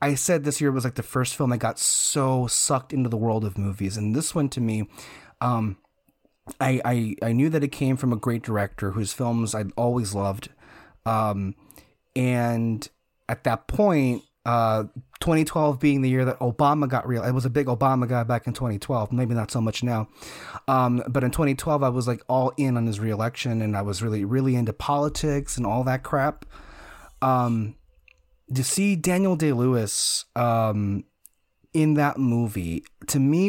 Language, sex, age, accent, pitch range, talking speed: English, male, 30-49, American, 115-145 Hz, 180 wpm